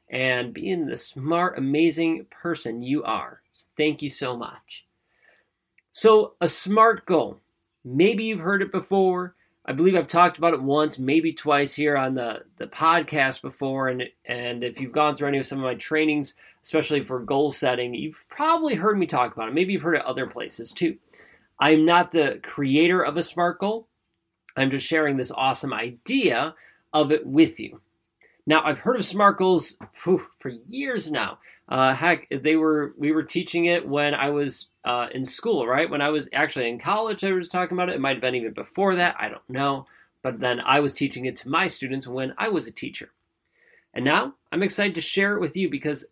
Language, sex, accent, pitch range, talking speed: English, male, American, 135-175 Hz, 200 wpm